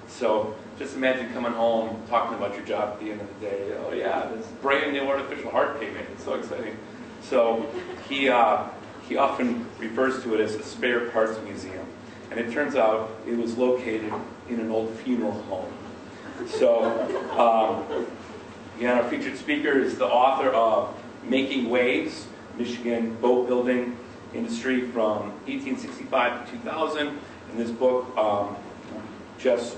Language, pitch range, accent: English, 110-125 Hz, American